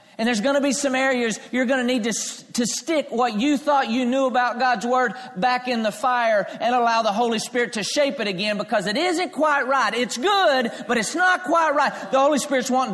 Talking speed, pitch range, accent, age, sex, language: 235 wpm, 195-250 Hz, American, 40-59, male, English